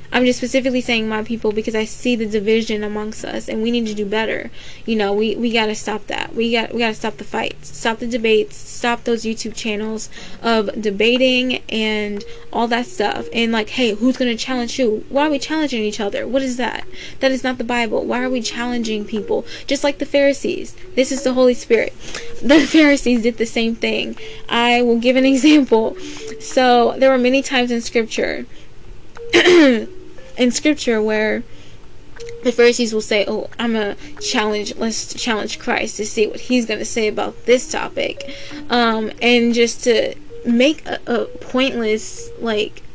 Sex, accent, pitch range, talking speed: female, American, 220-255 Hz, 190 wpm